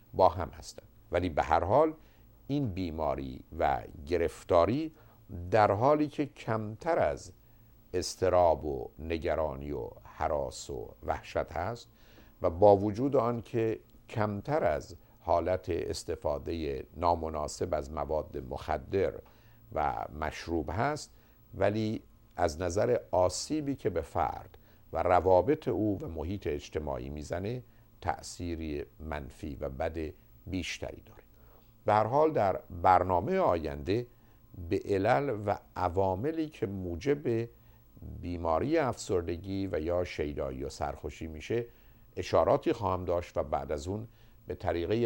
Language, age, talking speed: Persian, 50-69, 115 wpm